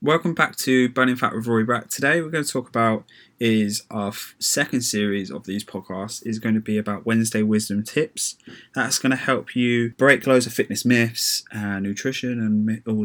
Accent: British